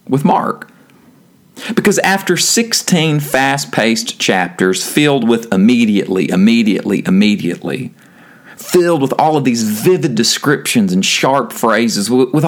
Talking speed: 110 wpm